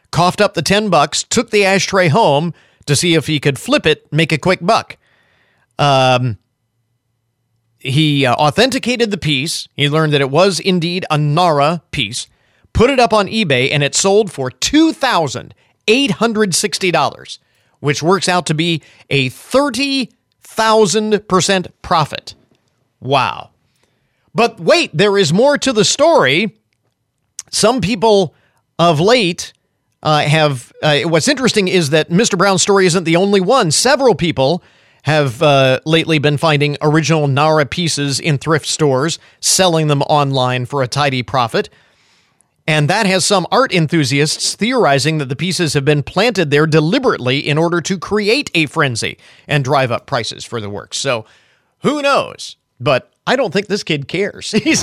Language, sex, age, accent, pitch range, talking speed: English, male, 40-59, American, 145-200 Hz, 150 wpm